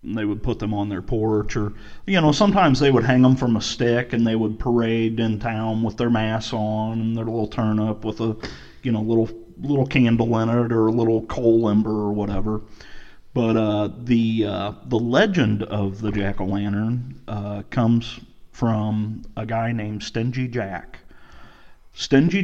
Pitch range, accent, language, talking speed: 105-120 Hz, American, English, 185 wpm